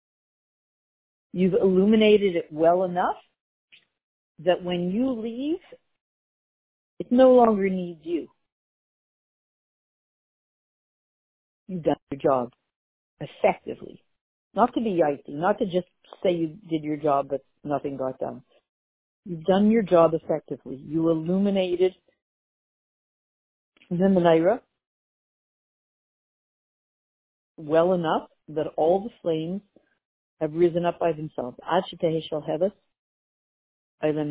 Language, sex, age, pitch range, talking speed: English, female, 50-69, 155-200 Hz, 100 wpm